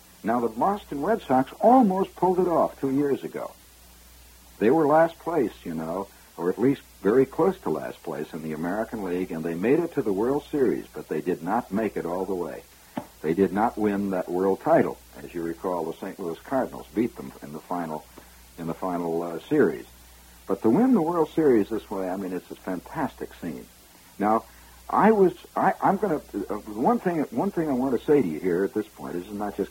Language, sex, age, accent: English, male, 60-79, American